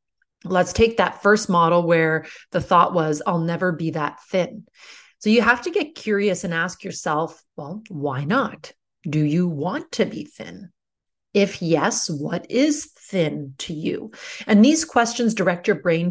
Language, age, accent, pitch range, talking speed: English, 30-49, American, 170-220 Hz, 170 wpm